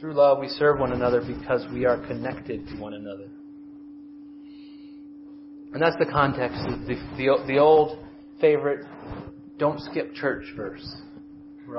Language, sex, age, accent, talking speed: English, male, 30-49, American, 145 wpm